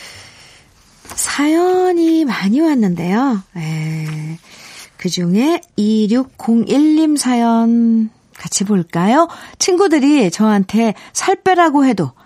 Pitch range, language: 200-285 Hz, Korean